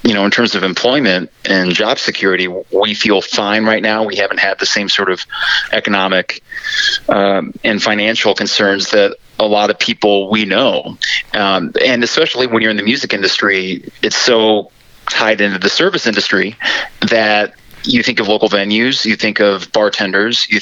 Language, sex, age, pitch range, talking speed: English, male, 30-49, 100-120 Hz, 175 wpm